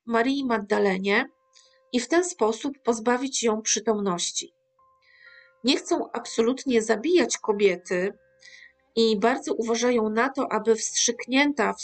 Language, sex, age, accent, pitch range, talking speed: Polish, female, 40-59, native, 215-265 Hz, 110 wpm